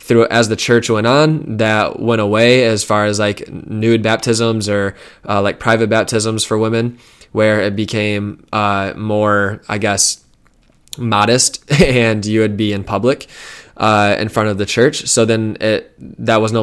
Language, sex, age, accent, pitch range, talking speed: English, male, 20-39, American, 105-115 Hz, 175 wpm